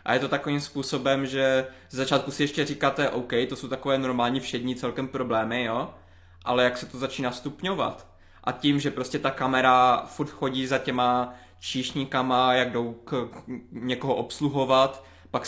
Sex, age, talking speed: male, 20-39, 165 wpm